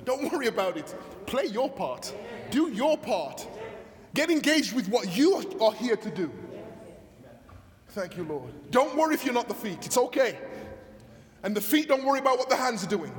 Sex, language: male, English